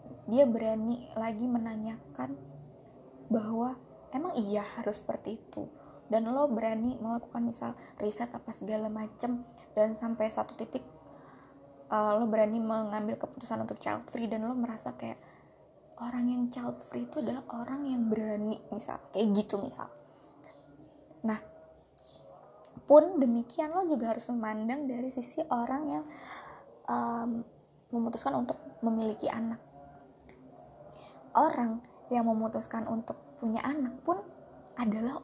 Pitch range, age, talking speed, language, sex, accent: 215-245 Hz, 20-39, 125 wpm, English, female, Indonesian